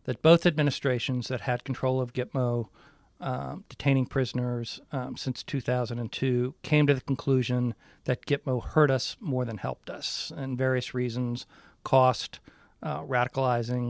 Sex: male